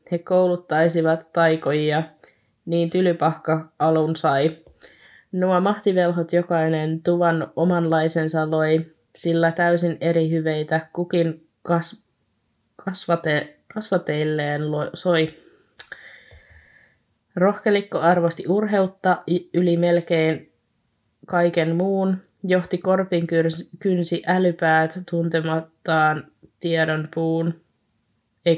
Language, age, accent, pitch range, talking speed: Finnish, 20-39, native, 160-175 Hz, 80 wpm